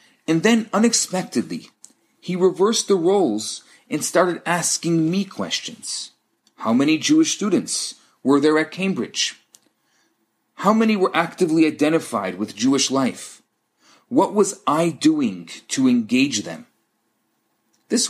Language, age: English, 40-59